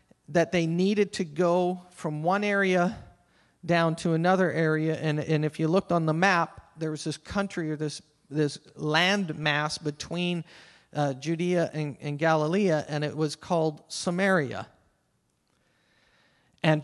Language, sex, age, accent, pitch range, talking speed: English, male, 40-59, American, 155-180 Hz, 145 wpm